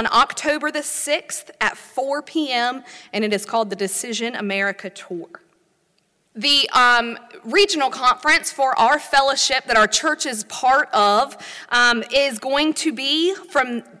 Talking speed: 140 wpm